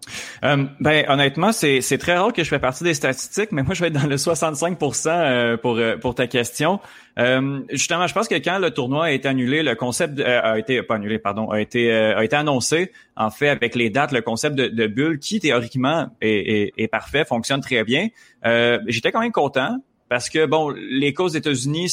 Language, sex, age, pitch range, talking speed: French, male, 30-49, 115-150 Hz, 225 wpm